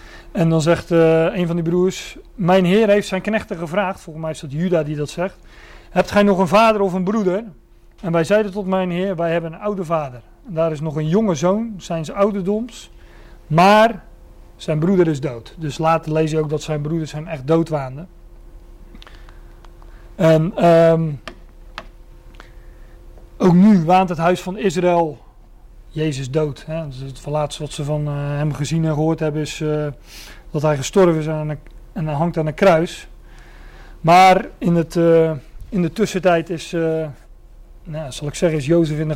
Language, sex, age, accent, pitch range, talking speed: Dutch, male, 40-59, Dutch, 150-185 Hz, 180 wpm